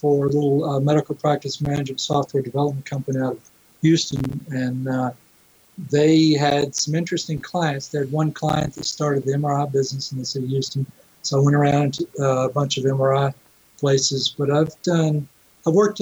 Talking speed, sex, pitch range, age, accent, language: 185 wpm, male, 130-150 Hz, 50-69, American, English